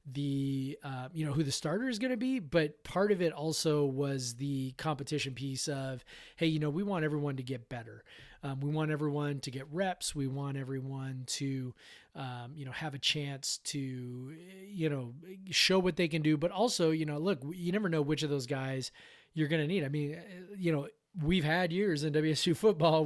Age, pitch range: 30-49, 135-165 Hz